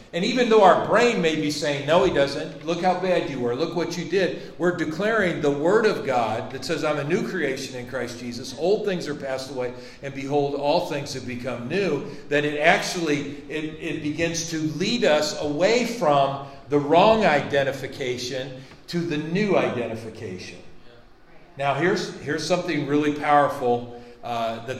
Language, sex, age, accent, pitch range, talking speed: English, male, 50-69, American, 125-160 Hz, 175 wpm